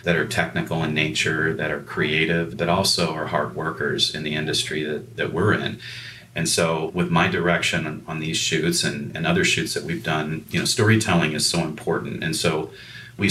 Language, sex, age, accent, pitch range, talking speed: English, male, 40-59, American, 80-105 Hz, 205 wpm